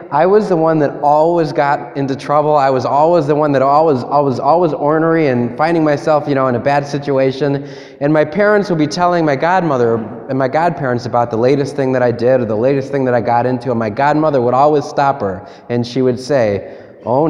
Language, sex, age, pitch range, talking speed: English, male, 20-39, 125-160 Hz, 230 wpm